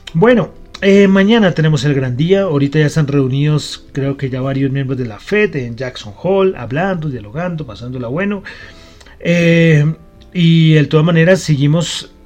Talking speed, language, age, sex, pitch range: 155 wpm, Spanish, 30-49, male, 130-160 Hz